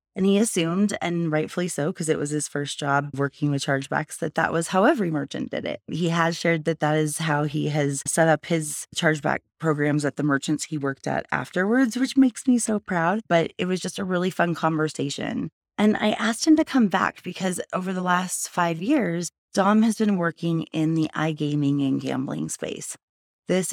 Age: 20-39